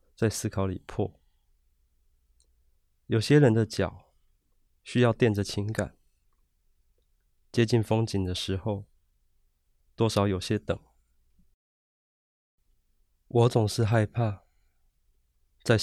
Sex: male